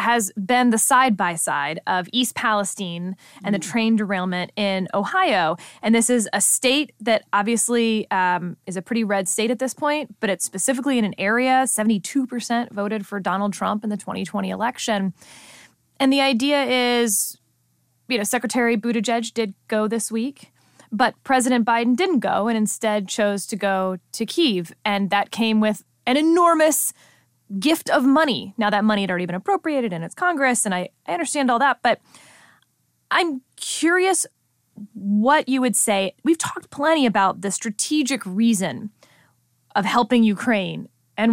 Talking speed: 160 wpm